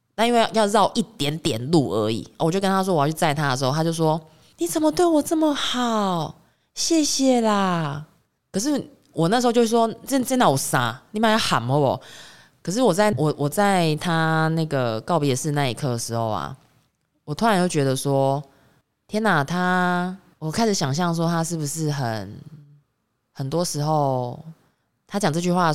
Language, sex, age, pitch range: Chinese, female, 20-39, 125-165 Hz